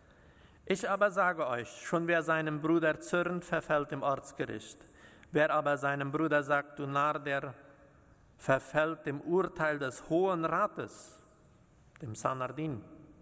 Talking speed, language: 125 wpm, German